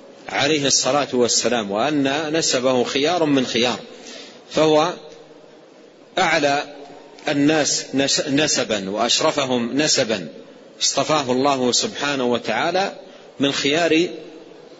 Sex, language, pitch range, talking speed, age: male, Arabic, 130-155 Hz, 80 wpm, 40-59